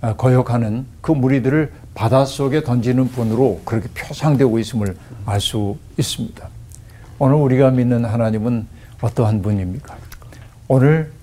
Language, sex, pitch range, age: Korean, male, 110-130 Hz, 60-79